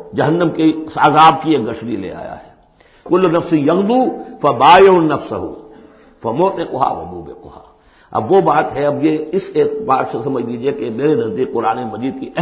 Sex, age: male, 60-79